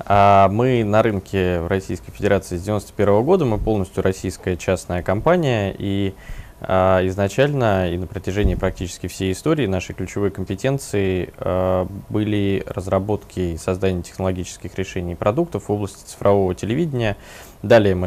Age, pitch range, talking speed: 20-39, 90-105 Hz, 125 wpm